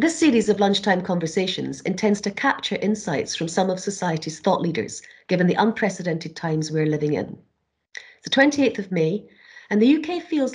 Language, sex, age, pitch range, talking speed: English, female, 40-59, 175-245 Hz, 175 wpm